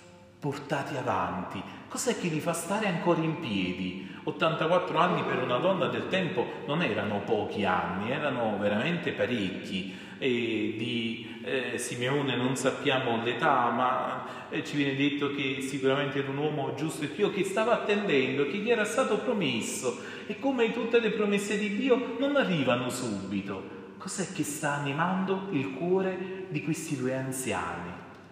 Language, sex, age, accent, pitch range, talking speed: Italian, male, 30-49, native, 120-185 Hz, 155 wpm